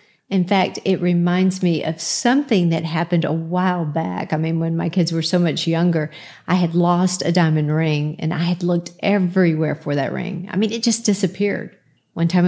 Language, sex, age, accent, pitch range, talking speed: English, female, 50-69, American, 165-195 Hz, 200 wpm